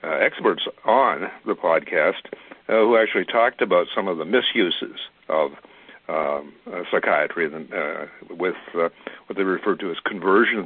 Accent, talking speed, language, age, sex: American, 160 wpm, English, 60-79, male